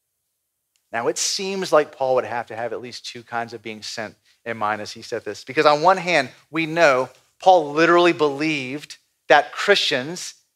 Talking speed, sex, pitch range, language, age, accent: 190 wpm, male, 125-175 Hz, English, 40-59, American